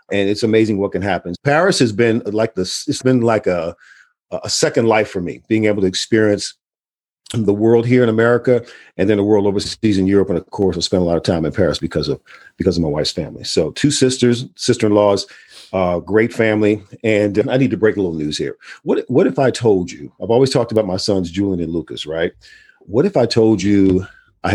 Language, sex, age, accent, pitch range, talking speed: English, male, 40-59, American, 100-130 Hz, 220 wpm